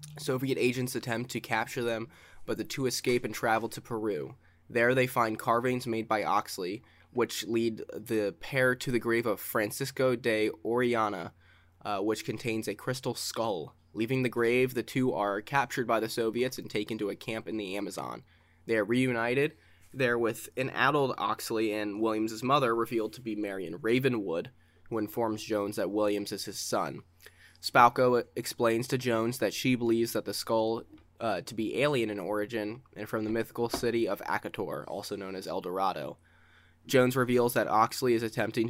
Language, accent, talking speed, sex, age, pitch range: English, American, 175 wpm, male, 20-39, 105-120 Hz